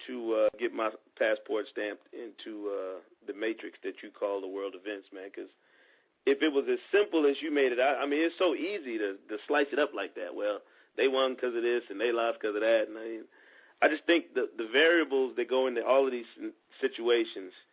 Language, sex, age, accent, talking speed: English, male, 40-59, American, 225 wpm